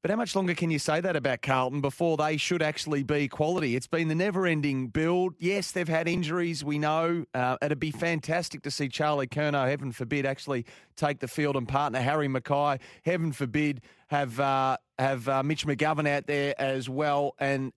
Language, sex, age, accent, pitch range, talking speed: English, male, 30-49, Australian, 130-155 Hz, 195 wpm